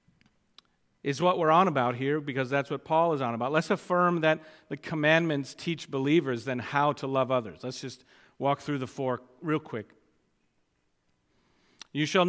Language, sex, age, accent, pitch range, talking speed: English, male, 50-69, American, 125-175 Hz, 170 wpm